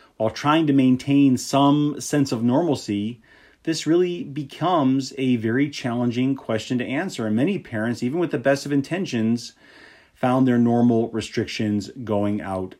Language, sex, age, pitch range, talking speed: English, male, 30-49, 105-135 Hz, 150 wpm